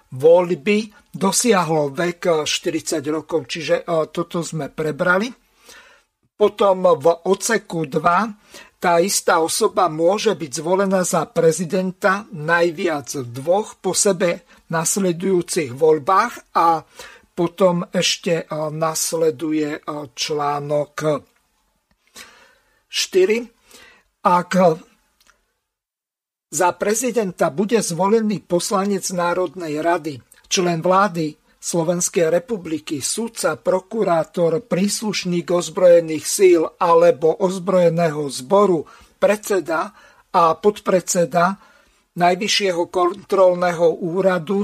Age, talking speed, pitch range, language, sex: 50-69, 80 wpm, 165-200 Hz, Slovak, male